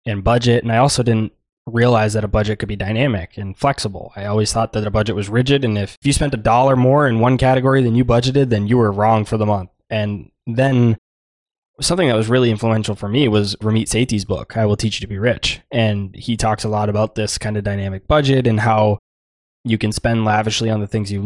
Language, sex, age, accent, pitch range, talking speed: English, male, 20-39, American, 105-120 Hz, 235 wpm